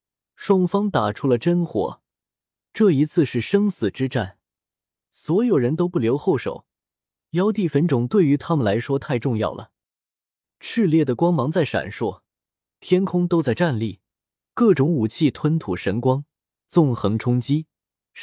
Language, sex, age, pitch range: Chinese, male, 20-39, 110-165 Hz